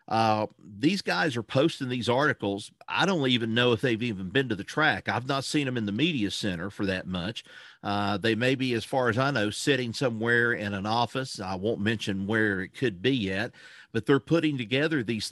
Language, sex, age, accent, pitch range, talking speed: English, male, 50-69, American, 105-130 Hz, 220 wpm